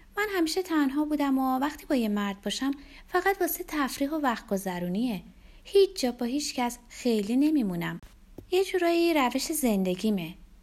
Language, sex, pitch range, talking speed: Persian, female, 180-260 Hz, 150 wpm